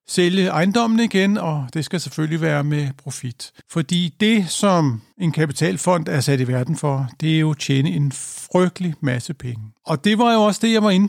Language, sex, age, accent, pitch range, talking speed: Danish, male, 60-79, native, 145-195 Hz, 205 wpm